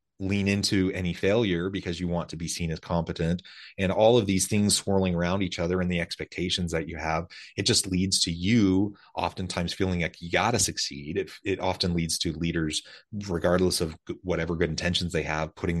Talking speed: 200 wpm